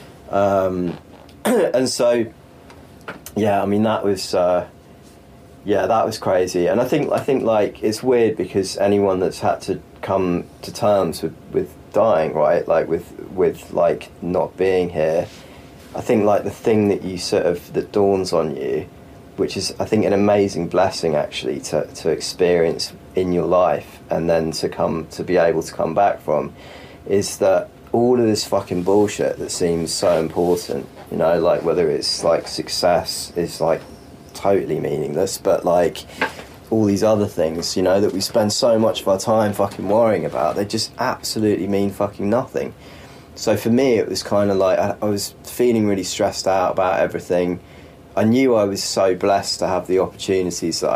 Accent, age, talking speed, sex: British, 30-49, 180 wpm, male